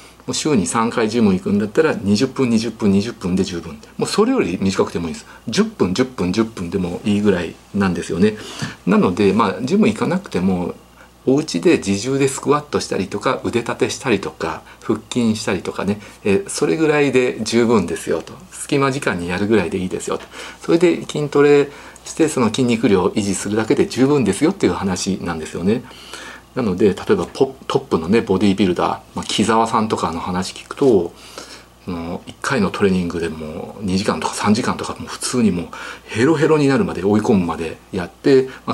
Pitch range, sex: 95-145 Hz, male